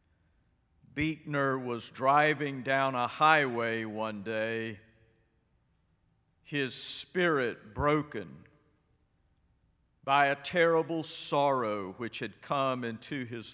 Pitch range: 115-165 Hz